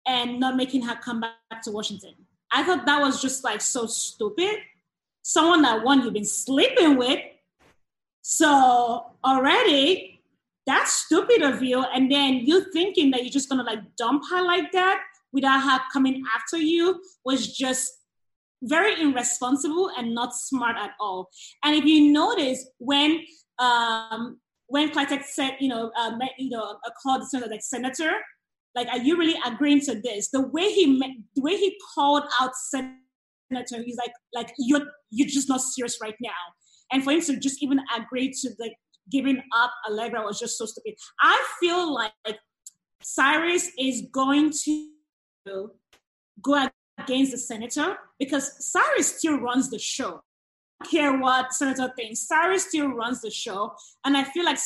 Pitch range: 240-300 Hz